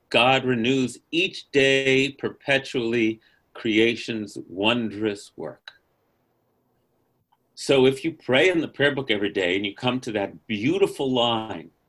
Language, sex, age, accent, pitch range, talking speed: English, male, 40-59, American, 110-135 Hz, 125 wpm